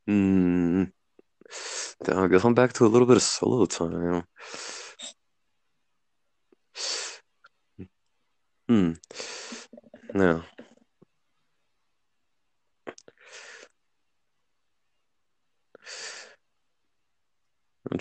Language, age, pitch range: English, 20-39, 90-125 Hz